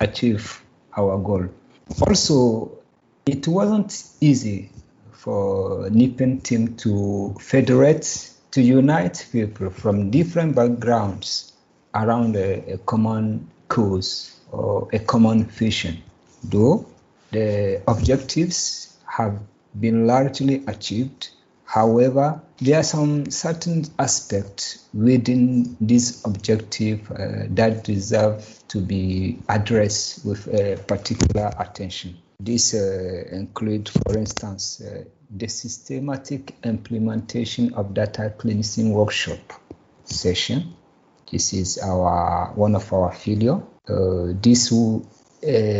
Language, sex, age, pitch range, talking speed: English, male, 50-69, 100-125 Hz, 100 wpm